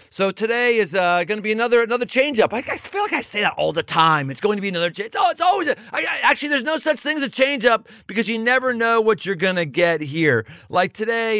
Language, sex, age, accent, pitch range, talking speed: English, male, 40-59, American, 155-235 Hz, 280 wpm